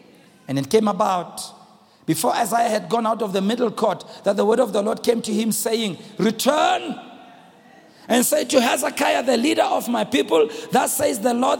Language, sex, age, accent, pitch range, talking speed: English, male, 50-69, South African, 205-285 Hz, 190 wpm